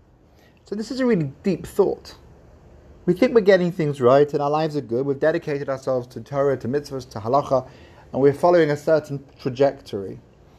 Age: 30-49